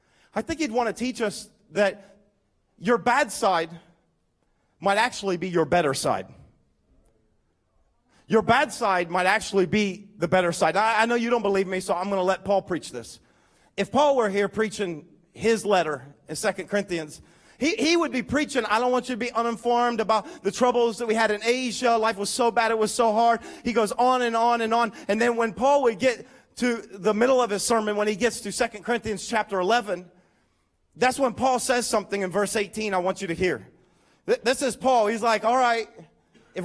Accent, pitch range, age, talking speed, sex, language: American, 200-250 Hz, 40-59, 210 wpm, male, English